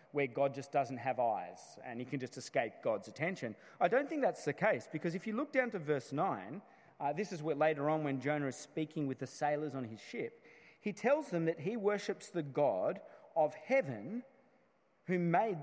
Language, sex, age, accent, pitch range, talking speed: English, male, 30-49, Australian, 140-195 Hz, 205 wpm